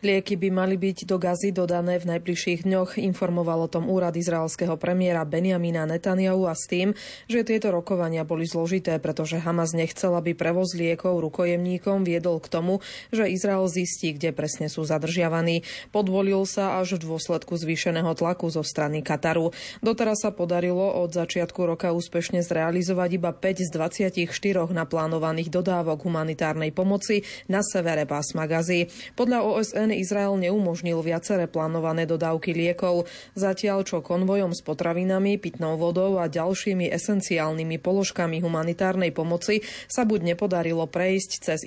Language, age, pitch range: Slovak, 30-49, 165-190 Hz